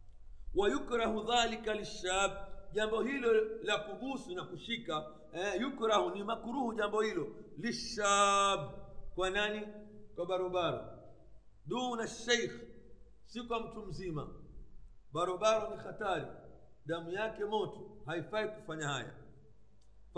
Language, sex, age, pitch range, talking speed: Swahili, male, 50-69, 185-225 Hz, 85 wpm